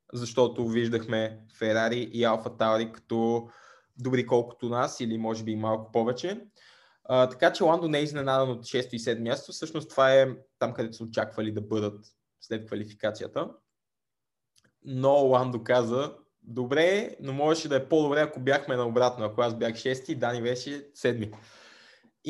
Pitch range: 115-140 Hz